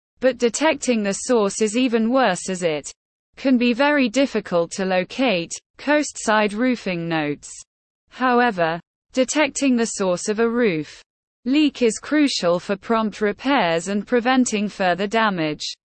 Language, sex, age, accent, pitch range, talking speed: English, female, 20-39, British, 185-250 Hz, 130 wpm